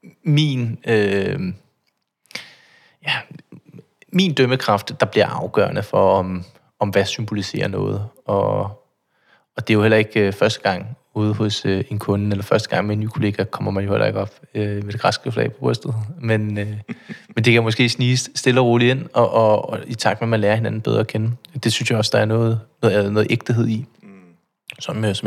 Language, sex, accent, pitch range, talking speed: Danish, male, native, 105-120 Hz, 200 wpm